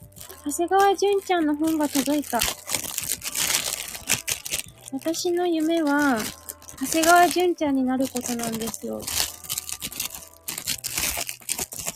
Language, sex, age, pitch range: Japanese, female, 20-39, 255-330 Hz